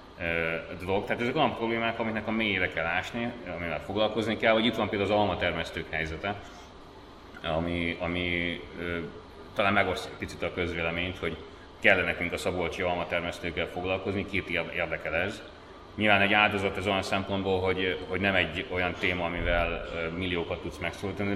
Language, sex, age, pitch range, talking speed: Hungarian, male, 30-49, 90-100 Hz, 150 wpm